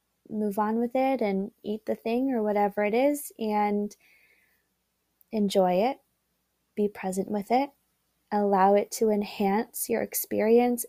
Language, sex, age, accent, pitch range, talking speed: English, female, 20-39, American, 190-220 Hz, 140 wpm